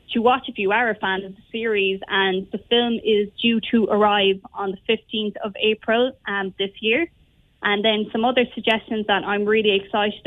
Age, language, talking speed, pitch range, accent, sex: 20-39, English, 200 wpm, 205-245 Hz, Irish, female